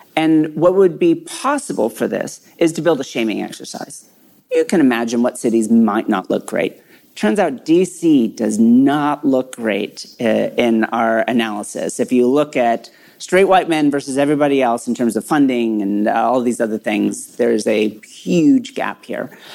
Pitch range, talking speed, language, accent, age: 120-180 Hz, 175 wpm, English, American, 40-59